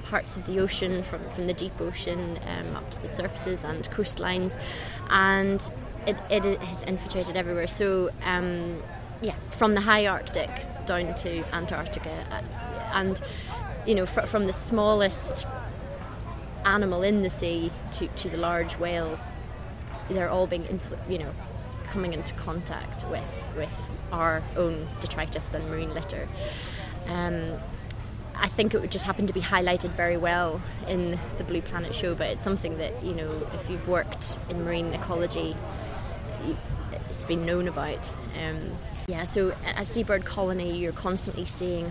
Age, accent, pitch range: 20-39, British, 150-195 Hz